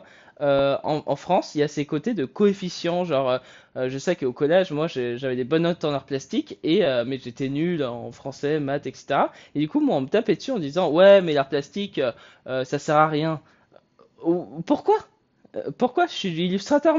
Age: 20-39